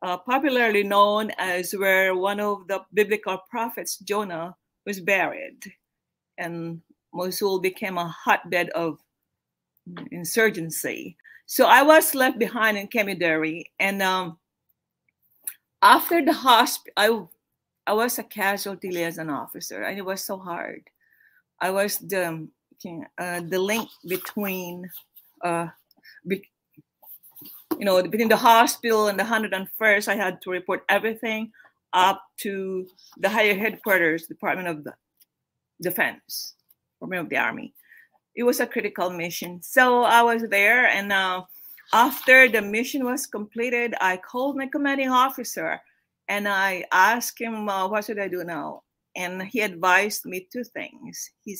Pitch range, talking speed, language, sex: 185-235 Hz, 135 wpm, English, female